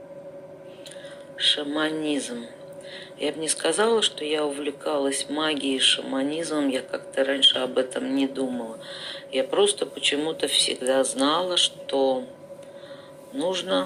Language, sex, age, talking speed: Russian, female, 40-59, 105 wpm